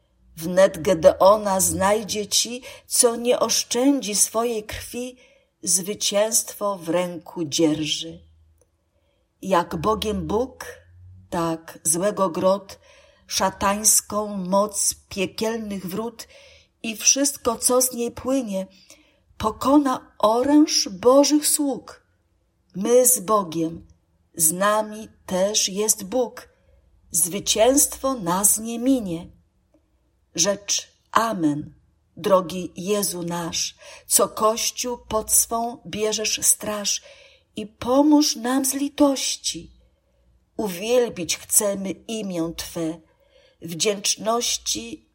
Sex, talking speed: female, 90 wpm